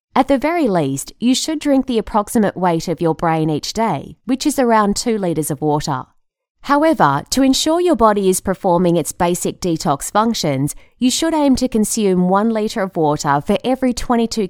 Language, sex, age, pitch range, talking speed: English, female, 20-39, 165-240 Hz, 185 wpm